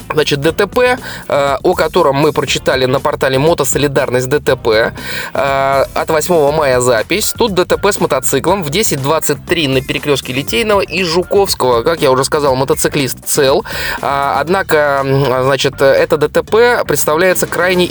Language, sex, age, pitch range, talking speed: Russian, male, 20-39, 145-195 Hz, 120 wpm